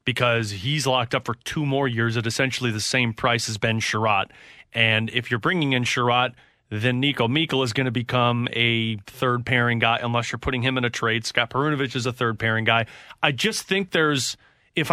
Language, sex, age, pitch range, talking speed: English, male, 30-49, 120-150 Hz, 210 wpm